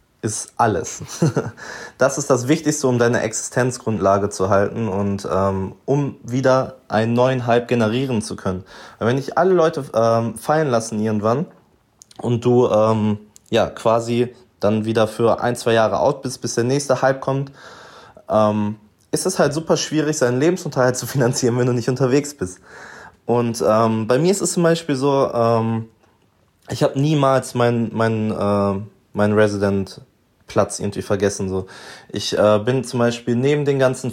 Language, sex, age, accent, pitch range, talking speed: German, male, 20-39, German, 105-130 Hz, 165 wpm